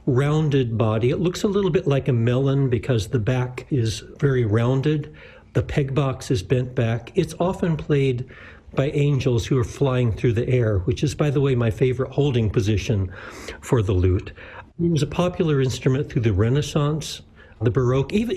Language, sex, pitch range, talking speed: English, male, 110-150 Hz, 180 wpm